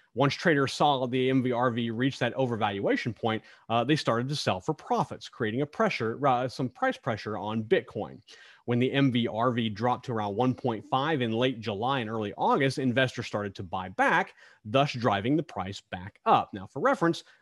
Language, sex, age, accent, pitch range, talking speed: English, male, 30-49, American, 115-145 Hz, 180 wpm